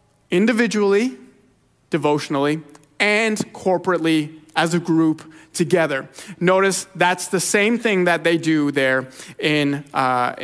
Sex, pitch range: male, 150-205 Hz